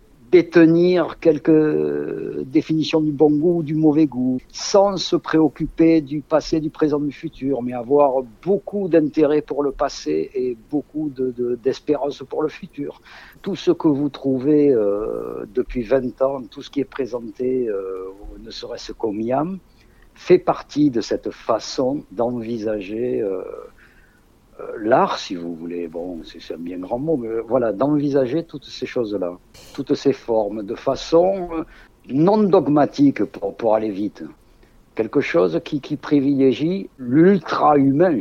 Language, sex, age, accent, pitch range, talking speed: French, male, 60-79, French, 120-160 Hz, 145 wpm